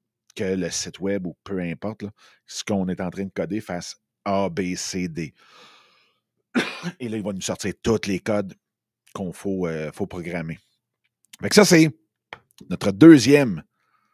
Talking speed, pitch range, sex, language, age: 170 wpm, 95-120 Hz, male, French, 50-69